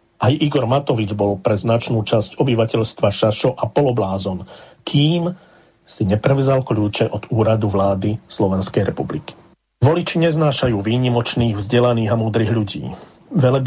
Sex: male